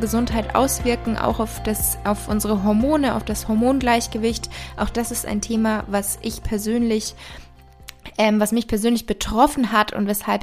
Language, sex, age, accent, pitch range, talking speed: German, female, 20-39, German, 205-235 Hz, 155 wpm